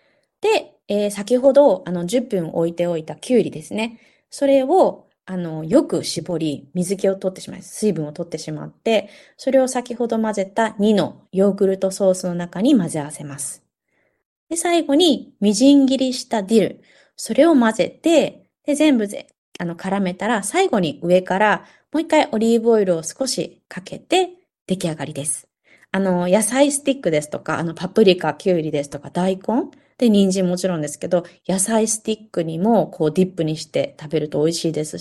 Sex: female